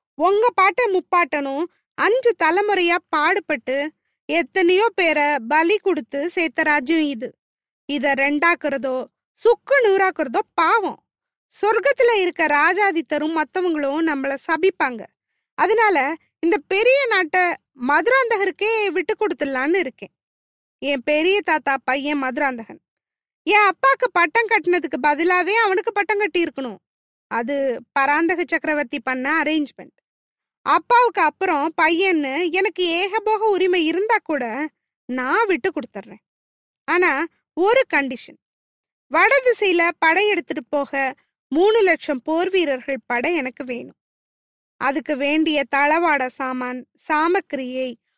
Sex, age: female, 20-39